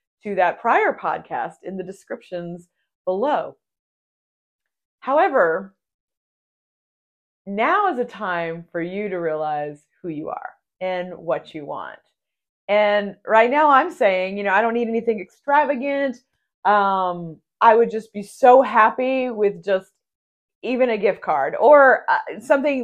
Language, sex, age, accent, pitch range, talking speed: English, female, 30-49, American, 185-255 Hz, 135 wpm